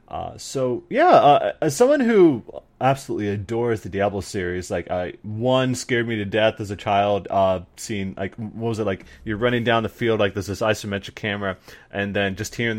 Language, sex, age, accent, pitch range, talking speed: English, male, 20-39, American, 100-120 Hz, 200 wpm